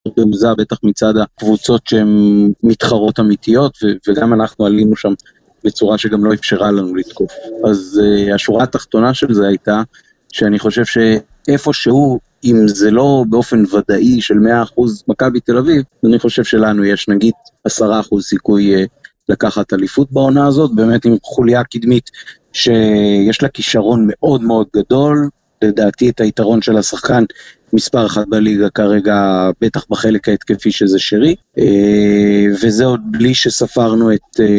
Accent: native